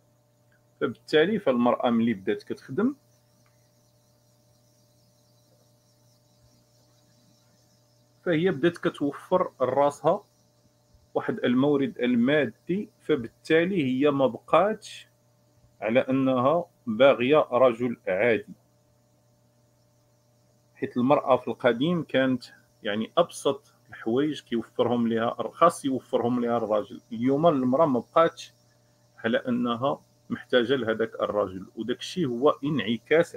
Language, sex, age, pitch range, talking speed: Arabic, male, 40-59, 115-145 Hz, 80 wpm